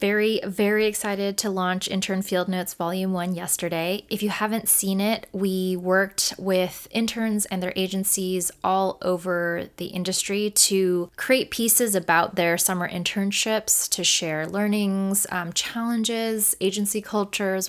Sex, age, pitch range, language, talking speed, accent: female, 20-39, 175-200 Hz, English, 140 wpm, American